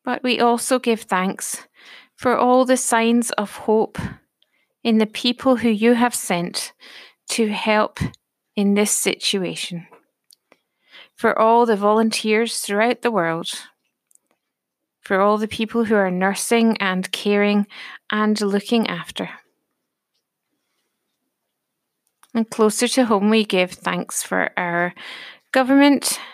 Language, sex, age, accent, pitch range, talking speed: English, female, 30-49, British, 195-235 Hz, 120 wpm